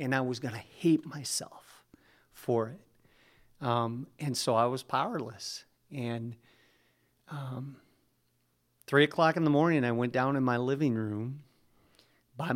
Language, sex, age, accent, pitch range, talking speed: English, male, 40-59, American, 120-145 Hz, 145 wpm